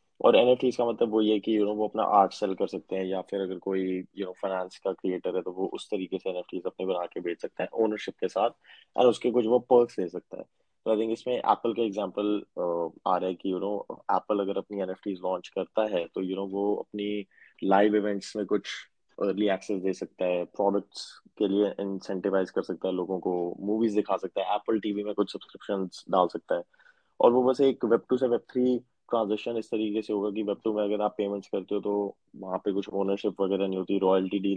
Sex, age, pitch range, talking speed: male, 20-39, 95-110 Hz, 180 wpm